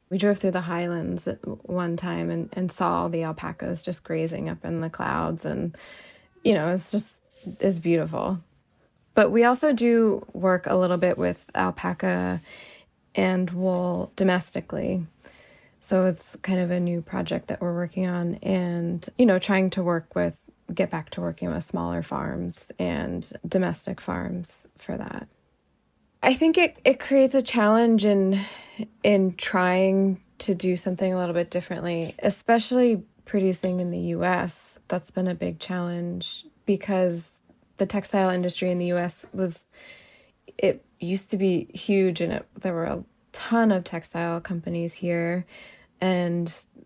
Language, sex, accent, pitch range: English, female, American, 170-195 Hz